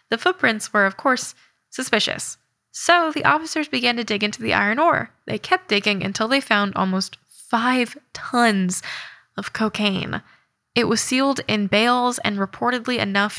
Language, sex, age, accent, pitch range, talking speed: English, female, 10-29, American, 190-235 Hz, 155 wpm